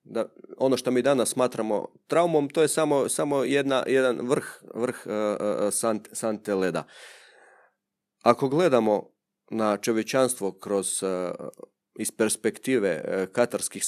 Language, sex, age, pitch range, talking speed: Croatian, male, 40-59, 105-135 Hz, 125 wpm